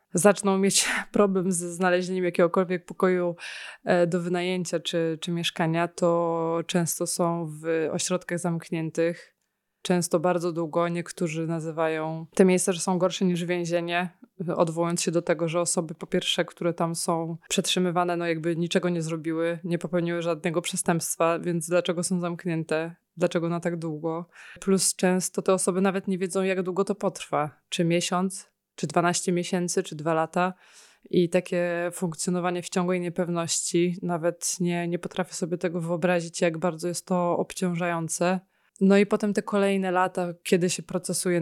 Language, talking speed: Polish, 150 wpm